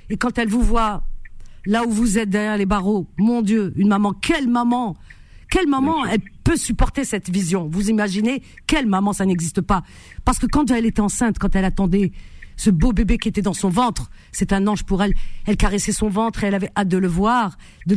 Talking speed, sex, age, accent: 220 wpm, female, 50-69, French